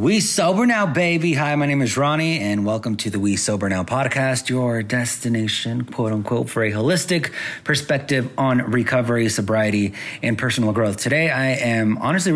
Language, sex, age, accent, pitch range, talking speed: English, male, 30-49, American, 105-135 Hz, 170 wpm